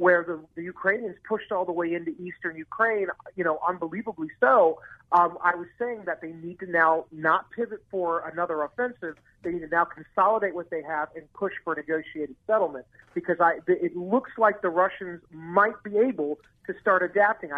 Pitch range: 165-205 Hz